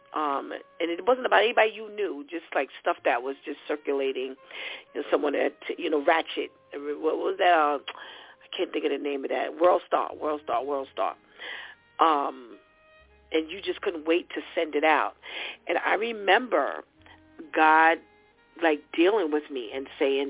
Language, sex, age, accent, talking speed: English, female, 40-59, American, 175 wpm